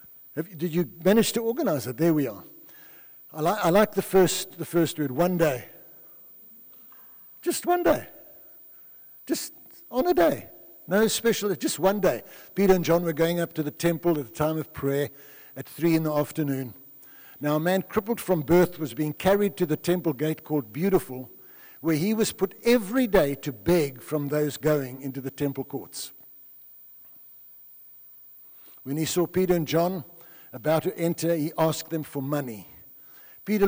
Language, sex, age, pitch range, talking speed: English, male, 60-79, 145-180 Hz, 165 wpm